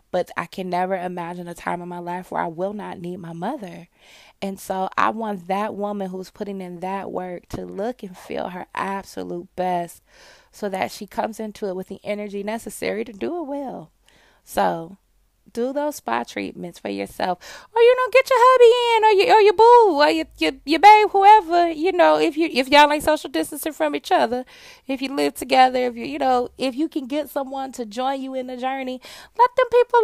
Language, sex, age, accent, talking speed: English, female, 20-39, American, 220 wpm